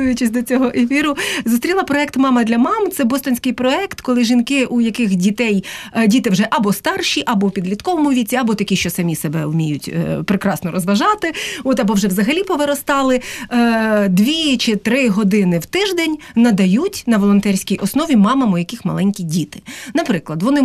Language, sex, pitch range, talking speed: Ukrainian, female, 195-270 Hz, 165 wpm